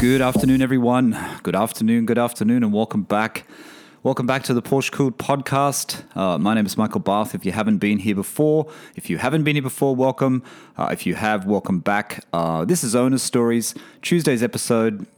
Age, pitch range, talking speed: 30-49, 90-130 Hz, 195 wpm